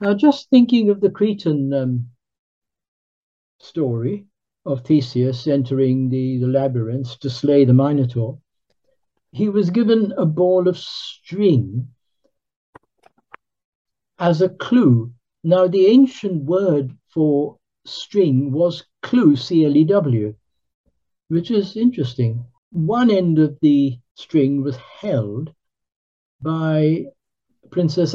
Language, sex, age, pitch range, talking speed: English, male, 60-79, 130-175 Hz, 105 wpm